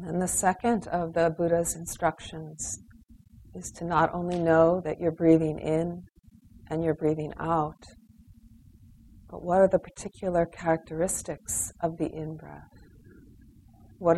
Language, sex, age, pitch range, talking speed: English, female, 40-59, 110-160 Hz, 125 wpm